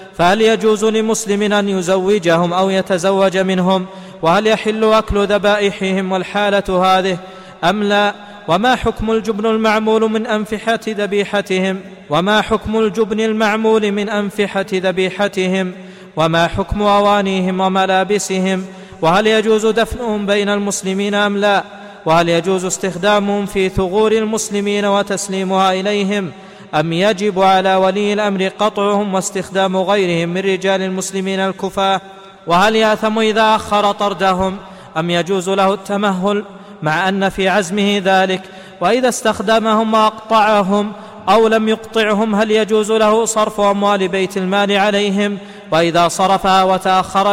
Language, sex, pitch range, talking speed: Arabic, male, 190-210 Hz, 115 wpm